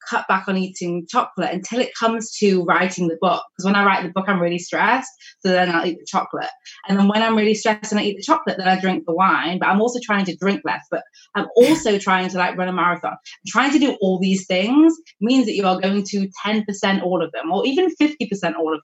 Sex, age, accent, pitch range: female, 20-39, British, 170-220 Hz